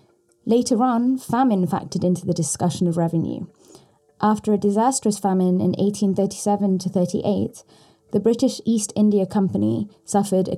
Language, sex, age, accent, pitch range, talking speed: English, female, 20-39, British, 180-220 Hz, 135 wpm